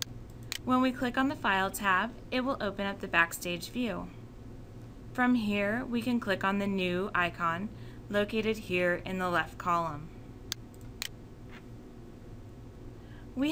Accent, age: American, 20-39